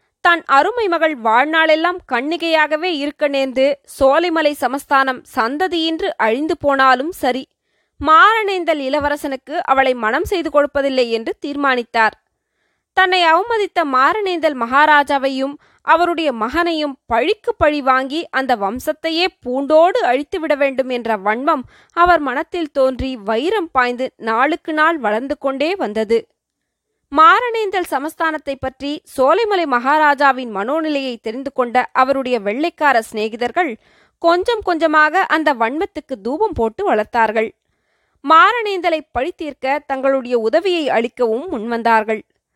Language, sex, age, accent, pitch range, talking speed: Tamil, female, 20-39, native, 260-335 Hz, 100 wpm